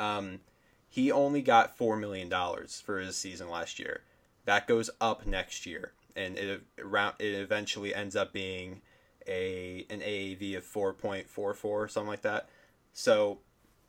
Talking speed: 150 wpm